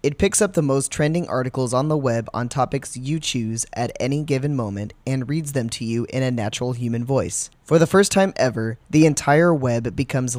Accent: American